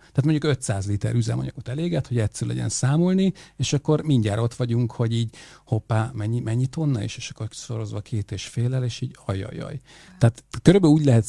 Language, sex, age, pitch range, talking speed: Hungarian, male, 50-69, 110-135 Hz, 185 wpm